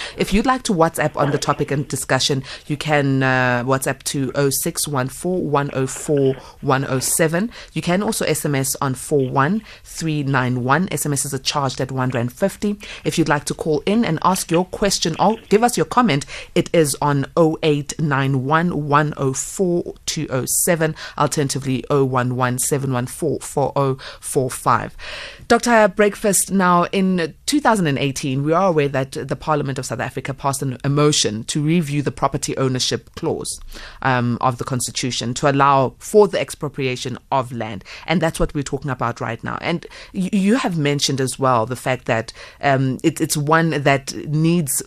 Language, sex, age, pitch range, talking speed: English, female, 30-49, 135-165 Hz, 140 wpm